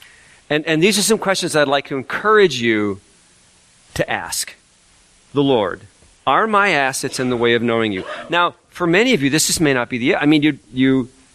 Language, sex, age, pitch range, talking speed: English, male, 40-59, 105-150 Hz, 205 wpm